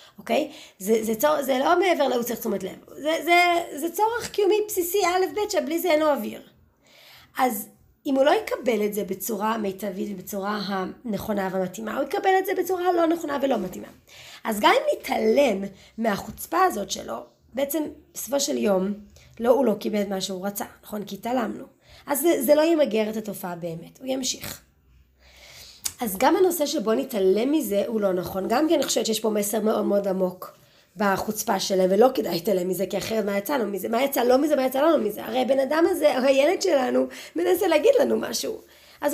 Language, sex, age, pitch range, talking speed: Hebrew, female, 30-49, 210-315 Hz, 200 wpm